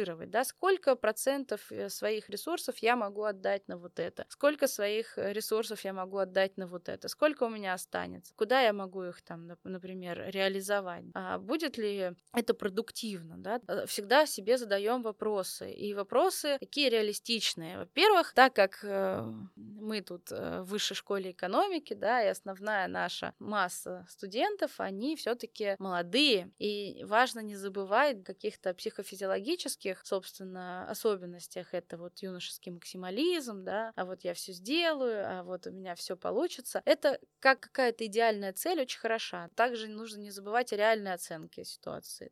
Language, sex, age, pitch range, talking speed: Russian, female, 20-39, 190-235 Hz, 145 wpm